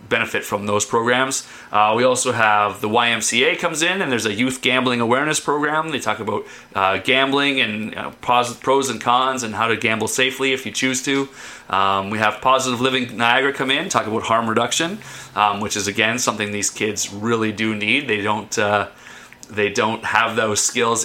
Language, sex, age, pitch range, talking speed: English, male, 30-49, 105-130 Hz, 195 wpm